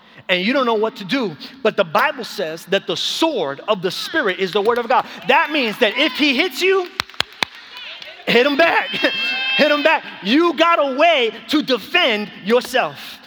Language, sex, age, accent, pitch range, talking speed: English, male, 30-49, American, 200-270 Hz, 190 wpm